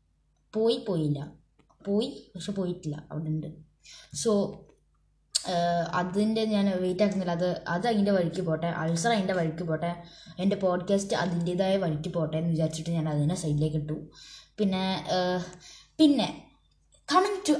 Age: 20-39